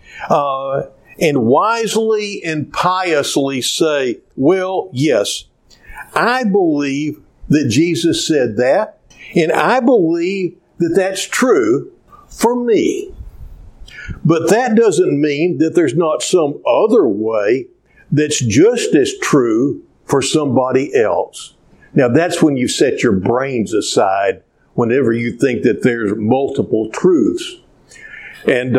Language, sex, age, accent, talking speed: English, male, 50-69, American, 115 wpm